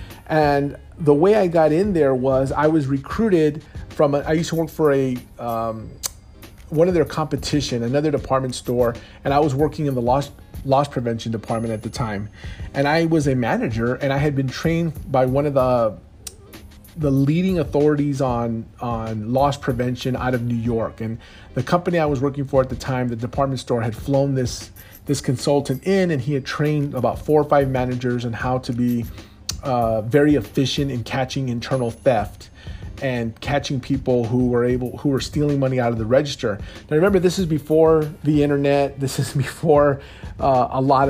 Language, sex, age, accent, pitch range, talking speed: English, male, 40-59, American, 120-145 Hz, 190 wpm